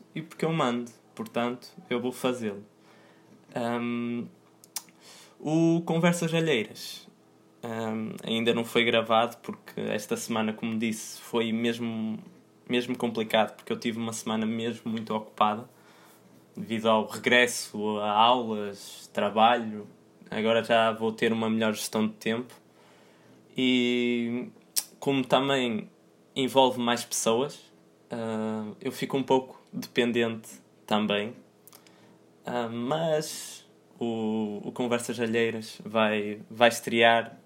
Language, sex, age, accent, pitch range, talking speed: Portuguese, male, 20-39, Brazilian, 110-125 Hz, 105 wpm